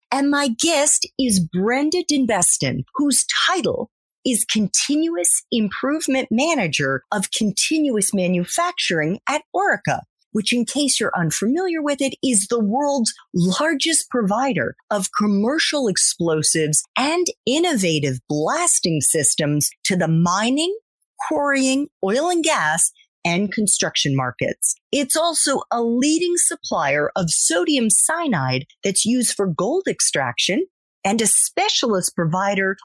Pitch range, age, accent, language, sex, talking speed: 175-275 Hz, 40-59, American, English, female, 115 wpm